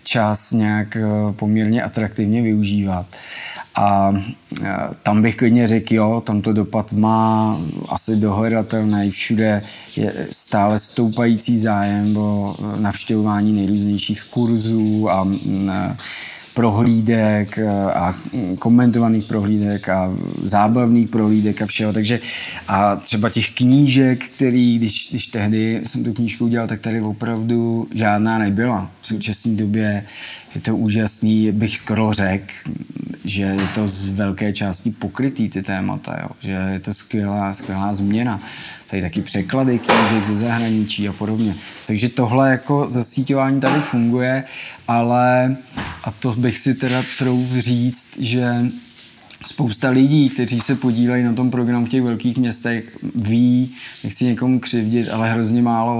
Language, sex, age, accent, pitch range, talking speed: Czech, male, 20-39, native, 105-120 Hz, 130 wpm